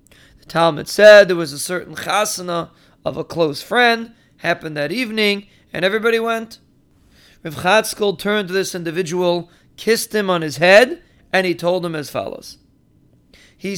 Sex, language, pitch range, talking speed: male, English, 165-200 Hz, 150 wpm